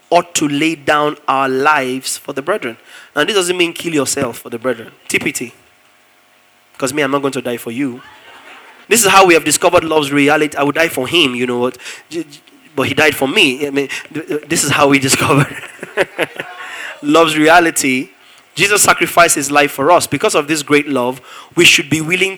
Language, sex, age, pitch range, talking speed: English, male, 20-39, 135-160 Hz, 195 wpm